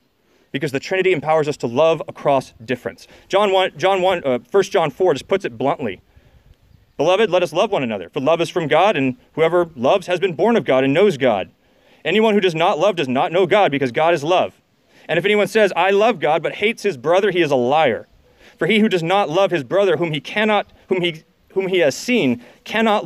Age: 30-49